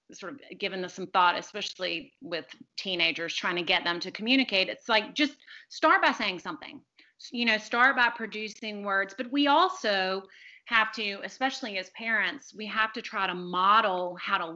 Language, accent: English, American